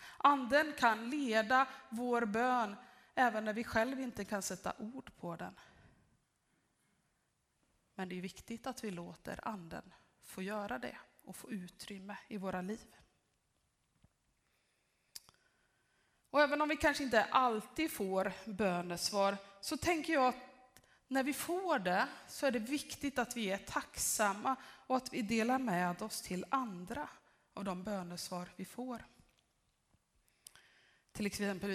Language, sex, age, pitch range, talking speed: Swedish, female, 20-39, 185-250 Hz, 135 wpm